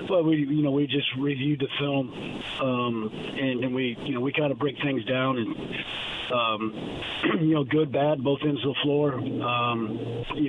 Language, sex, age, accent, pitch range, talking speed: English, male, 40-59, American, 120-145 Hz, 190 wpm